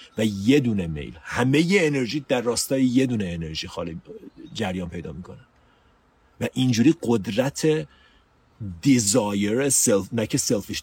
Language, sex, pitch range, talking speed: Persian, male, 90-135 Hz, 125 wpm